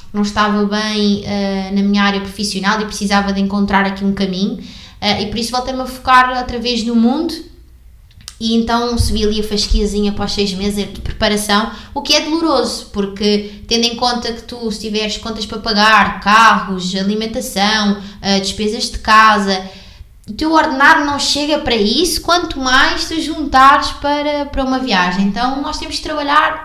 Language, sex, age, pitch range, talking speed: Portuguese, female, 20-39, 200-250 Hz, 175 wpm